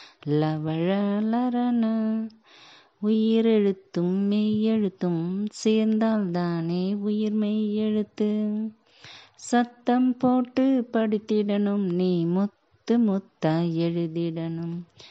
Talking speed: 60 wpm